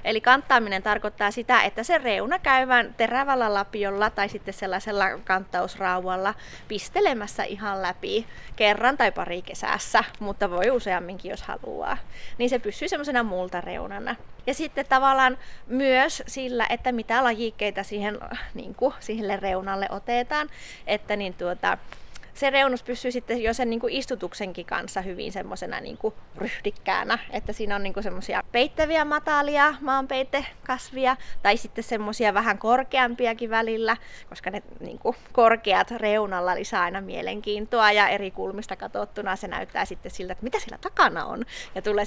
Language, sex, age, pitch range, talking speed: Finnish, female, 20-39, 200-260 Hz, 145 wpm